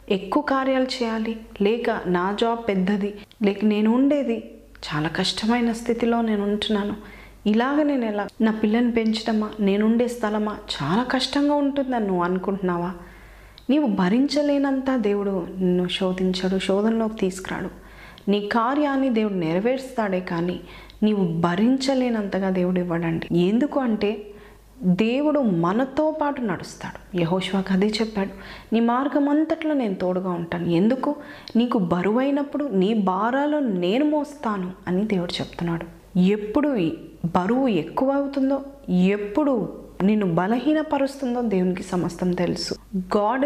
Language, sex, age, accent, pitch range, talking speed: Telugu, female, 30-49, native, 185-255 Hz, 105 wpm